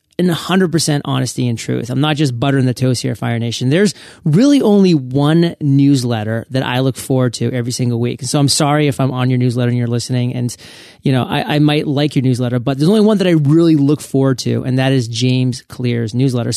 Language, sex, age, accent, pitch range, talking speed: English, male, 30-49, American, 125-150 Hz, 230 wpm